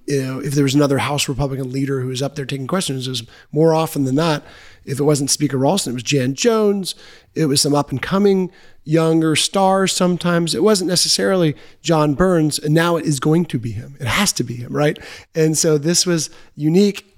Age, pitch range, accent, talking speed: 30-49, 140-165 Hz, American, 215 wpm